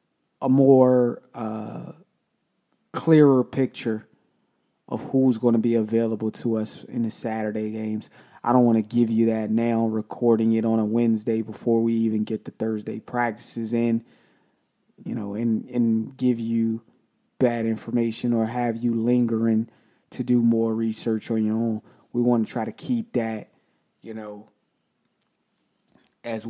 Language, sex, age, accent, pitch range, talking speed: English, male, 20-39, American, 110-125 Hz, 150 wpm